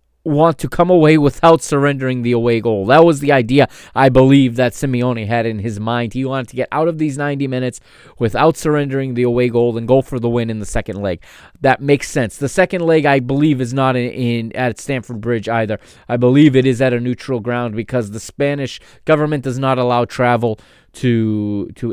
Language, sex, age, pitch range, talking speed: English, male, 20-39, 110-145 Hz, 215 wpm